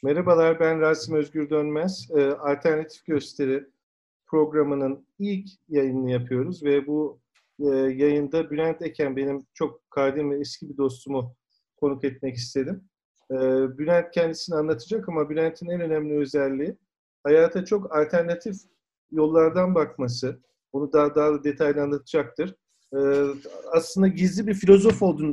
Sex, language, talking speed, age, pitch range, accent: male, Turkish, 125 wpm, 50-69, 145-175 Hz, native